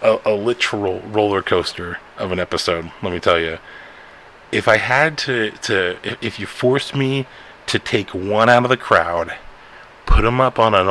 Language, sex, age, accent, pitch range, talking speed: English, male, 30-49, American, 100-120 Hz, 185 wpm